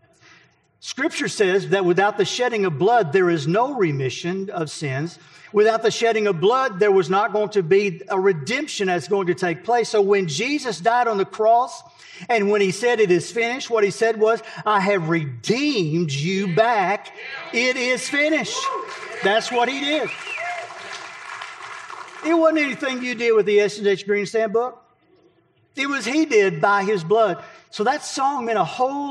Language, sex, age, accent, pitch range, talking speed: English, male, 50-69, American, 170-230 Hz, 175 wpm